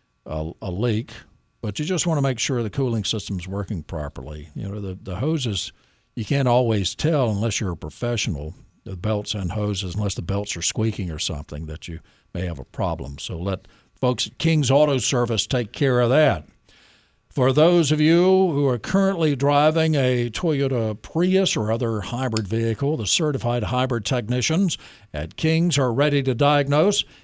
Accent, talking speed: American, 180 wpm